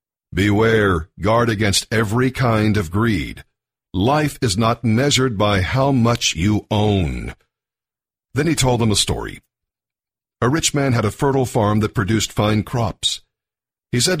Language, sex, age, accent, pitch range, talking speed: English, male, 50-69, American, 100-135 Hz, 150 wpm